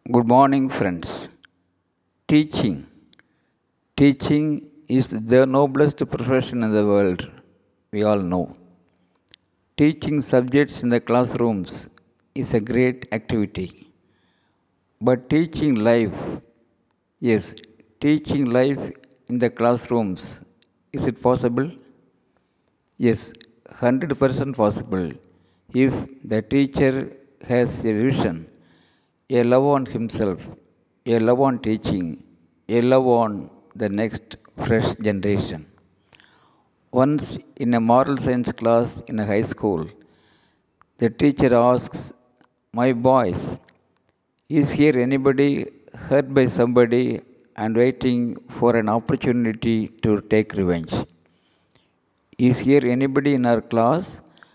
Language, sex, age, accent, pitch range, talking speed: Tamil, male, 60-79, native, 105-135 Hz, 105 wpm